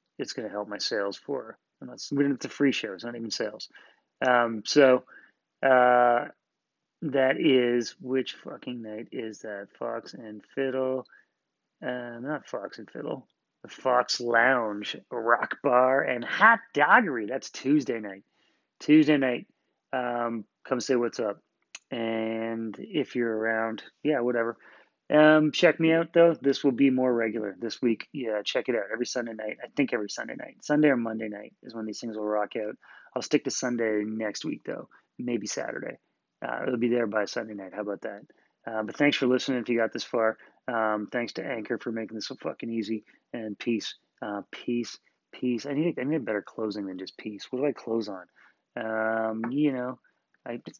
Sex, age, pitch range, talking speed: male, 30-49, 110-130 Hz, 185 wpm